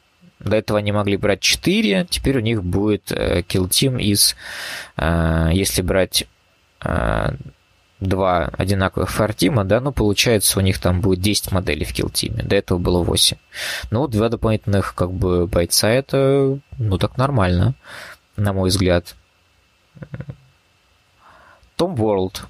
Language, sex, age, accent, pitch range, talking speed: Russian, male, 20-39, native, 90-110 Hz, 140 wpm